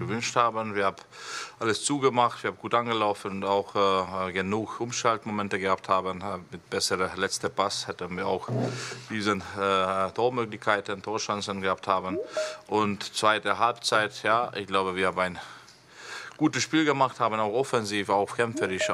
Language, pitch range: German, 95-115 Hz